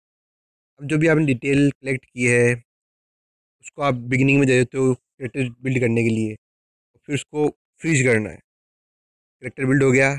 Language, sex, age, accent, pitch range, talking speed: Hindi, male, 20-39, native, 125-140 Hz, 170 wpm